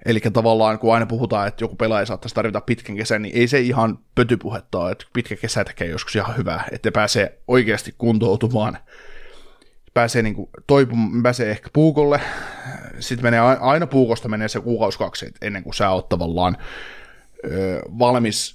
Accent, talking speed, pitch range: native, 150 wpm, 110-125 Hz